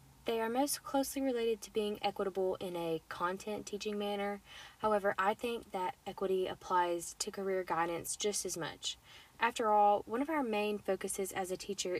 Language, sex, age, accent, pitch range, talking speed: English, female, 20-39, American, 185-220 Hz, 175 wpm